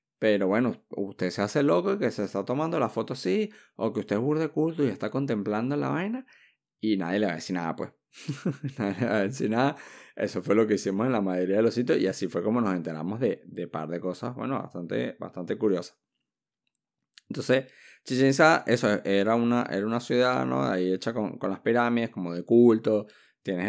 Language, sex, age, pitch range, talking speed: Spanish, male, 20-39, 95-120 Hz, 215 wpm